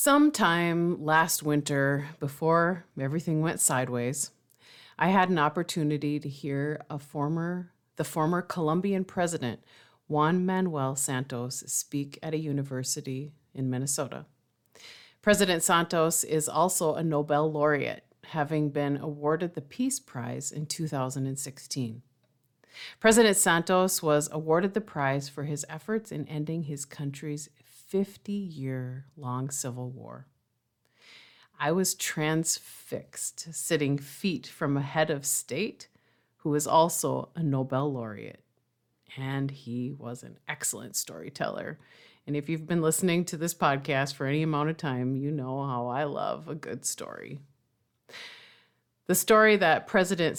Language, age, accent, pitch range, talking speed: English, 40-59, American, 135-170 Hz, 125 wpm